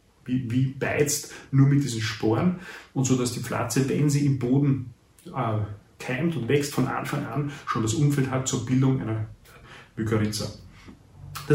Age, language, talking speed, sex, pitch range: 30-49, German, 165 wpm, male, 115-140 Hz